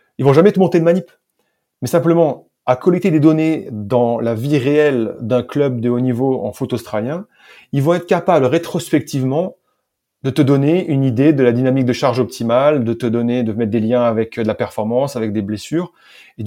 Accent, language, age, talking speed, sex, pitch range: French, French, 30-49, 205 wpm, male, 125-165 Hz